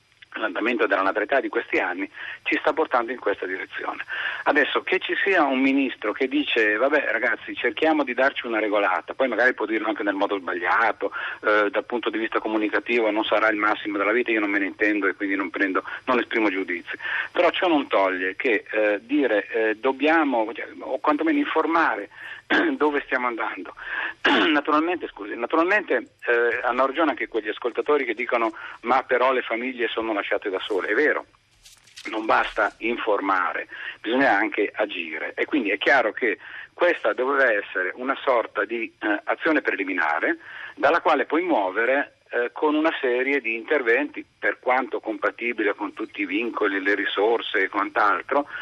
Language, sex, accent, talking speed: Italian, male, native, 165 wpm